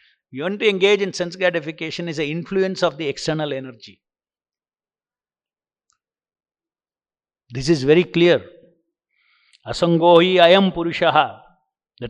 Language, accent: English, Indian